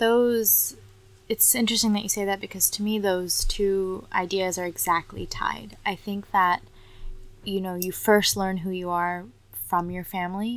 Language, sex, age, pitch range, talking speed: English, female, 20-39, 170-200 Hz, 170 wpm